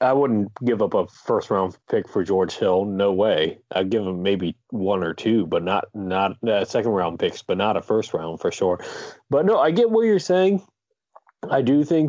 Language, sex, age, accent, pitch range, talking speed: English, male, 30-49, American, 100-130 Hz, 220 wpm